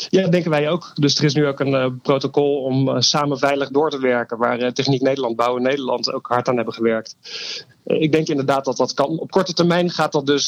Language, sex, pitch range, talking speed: Dutch, male, 130-150 Hz, 230 wpm